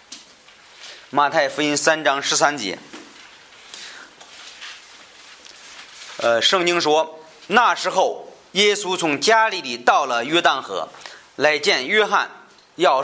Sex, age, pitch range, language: male, 30-49, 135-170 Hz, Chinese